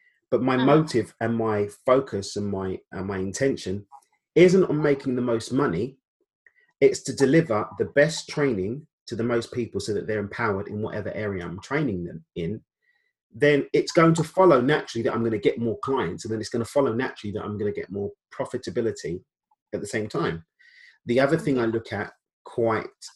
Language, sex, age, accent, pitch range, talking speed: English, male, 30-49, British, 105-145 Hz, 195 wpm